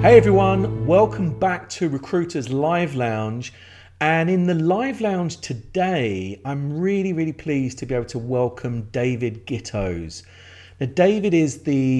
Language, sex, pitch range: English, male, 105-150 Hz